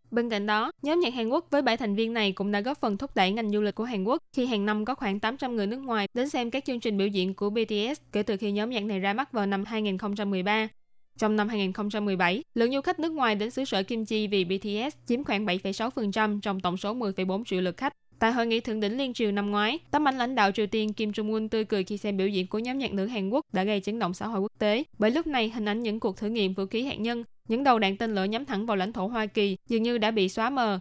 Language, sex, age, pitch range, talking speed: Vietnamese, female, 10-29, 200-235 Hz, 290 wpm